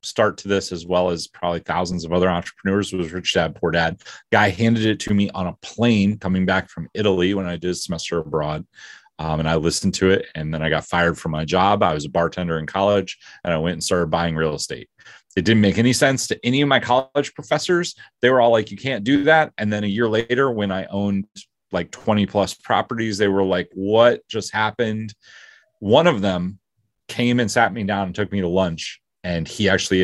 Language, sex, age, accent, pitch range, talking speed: English, male, 30-49, American, 90-115 Hz, 230 wpm